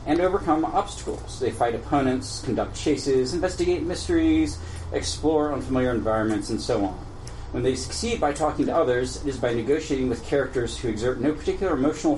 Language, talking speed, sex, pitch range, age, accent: English, 165 wpm, male, 110-140 Hz, 40-59, American